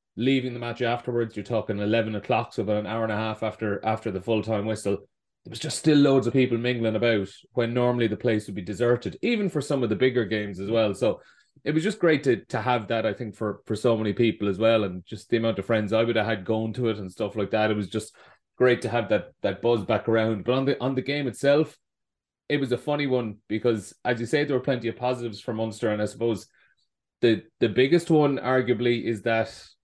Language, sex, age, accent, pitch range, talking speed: English, male, 30-49, Irish, 105-125 Hz, 250 wpm